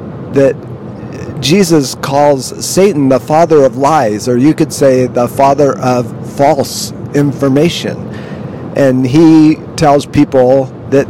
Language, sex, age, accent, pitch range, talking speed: English, male, 50-69, American, 125-150 Hz, 120 wpm